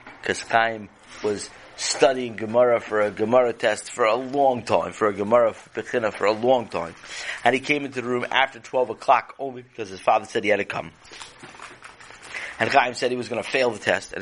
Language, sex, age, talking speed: English, male, 30-49, 210 wpm